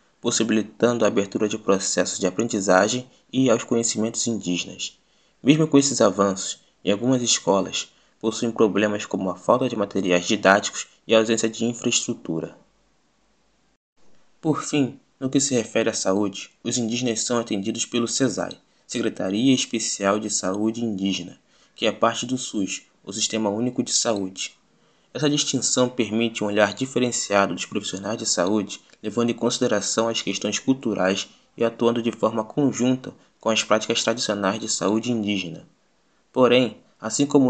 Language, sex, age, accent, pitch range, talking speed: Portuguese, male, 20-39, Brazilian, 105-125 Hz, 145 wpm